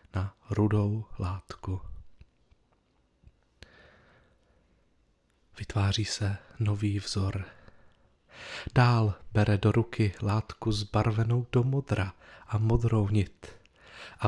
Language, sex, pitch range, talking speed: Czech, male, 105-130 Hz, 80 wpm